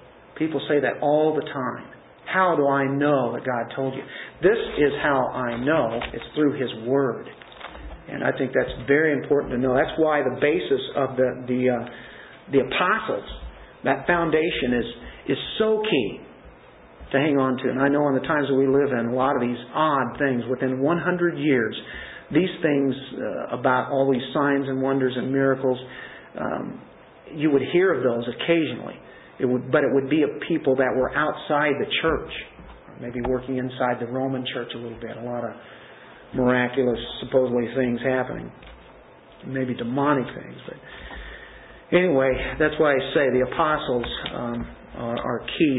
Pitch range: 125-165 Hz